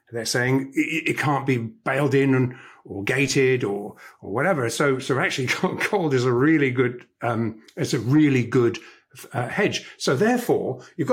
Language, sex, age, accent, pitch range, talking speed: English, male, 50-69, British, 130-195 Hz, 160 wpm